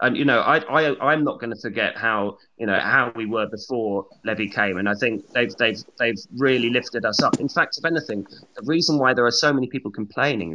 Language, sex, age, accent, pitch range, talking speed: English, male, 30-49, British, 95-125 Hz, 240 wpm